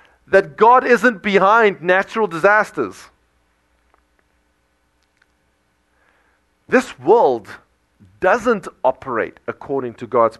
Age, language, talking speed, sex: 40-59, English, 75 wpm, male